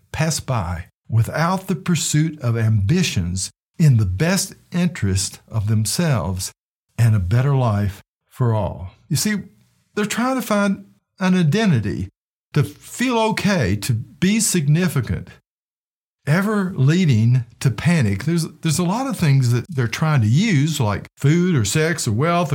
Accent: American